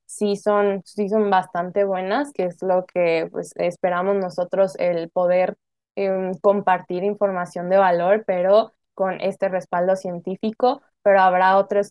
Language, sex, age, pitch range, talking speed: Spanish, female, 20-39, 180-195 Hz, 140 wpm